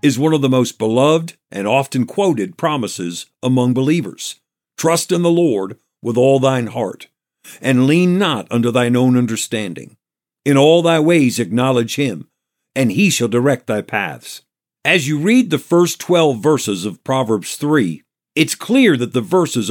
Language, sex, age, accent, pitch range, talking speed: English, male, 50-69, American, 125-165 Hz, 165 wpm